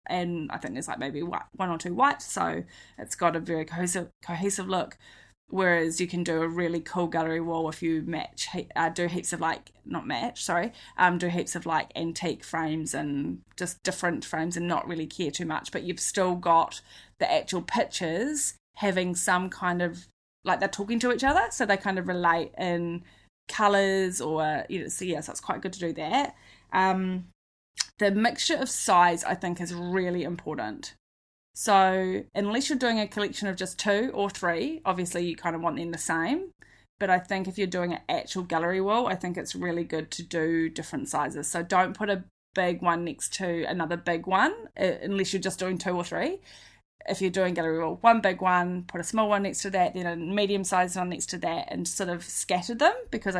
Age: 10-29